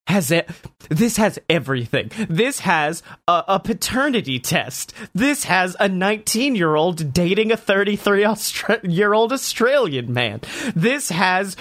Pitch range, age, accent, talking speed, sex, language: 175-235 Hz, 30-49, American, 125 wpm, male, English